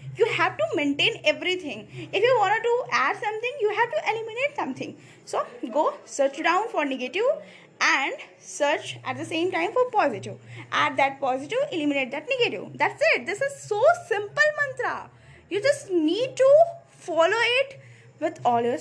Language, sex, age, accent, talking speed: English, female, 20-39, Indian, 165 wpm